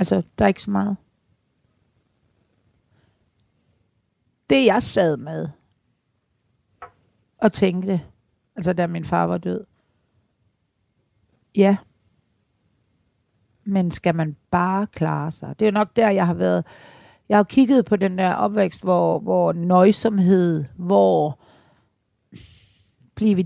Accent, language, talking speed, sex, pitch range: native, Danish, 115 wpm, female, 140-215 Hz